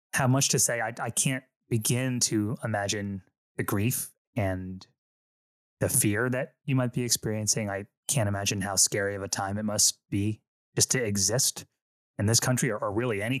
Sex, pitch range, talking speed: male, 100-125 Hz, 185 wpm